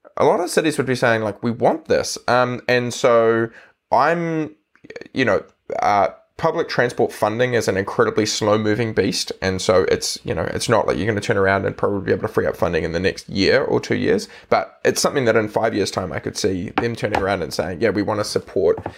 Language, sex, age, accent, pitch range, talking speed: English, male, 20-39, Australian, 115-150 Hz, 240 wpm